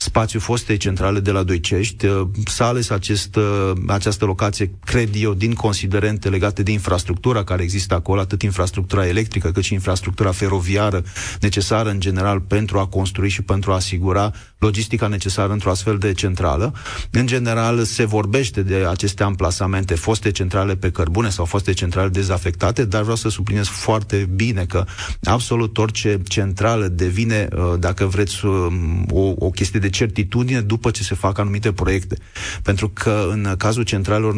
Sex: male